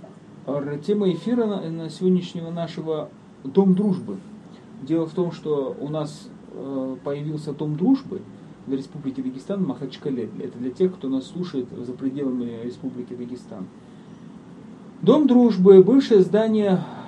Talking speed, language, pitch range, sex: 125 wpm, Russian, 135-195 Hz, male